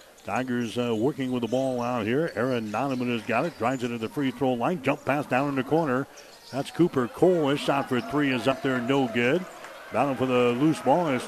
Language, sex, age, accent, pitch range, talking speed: English, male, 60-79, American, 125-145 Hz, 235 wpm